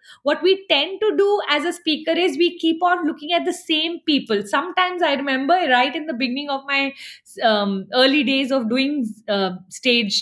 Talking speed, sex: 195 wpm, female